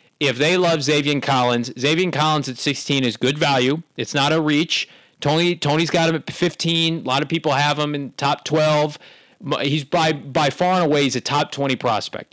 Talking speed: 205 wpm